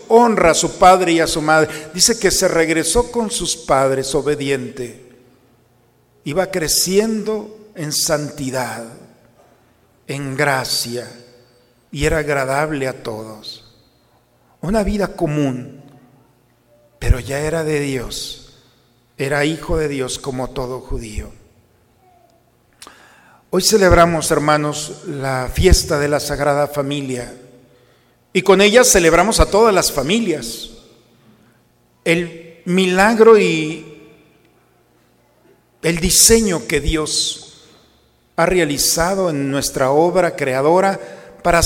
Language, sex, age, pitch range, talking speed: Spanish, male, 50-69, 130-195 Hz, 105 wpm